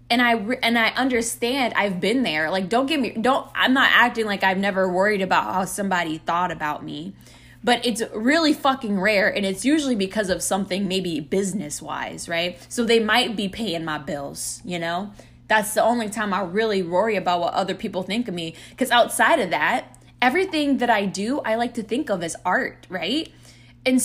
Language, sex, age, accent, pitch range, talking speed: English, female, 10-29, American, 175-250 Hz, 200 wpm